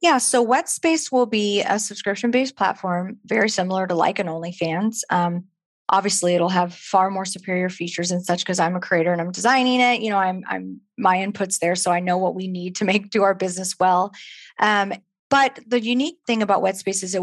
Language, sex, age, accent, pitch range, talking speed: English, female, 20-39, American, 185-230 Hz, 210 wpm